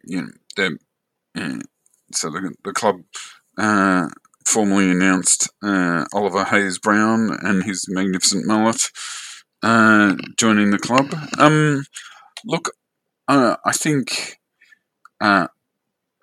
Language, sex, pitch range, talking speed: English, male, 90-105 Hz, 105 wpm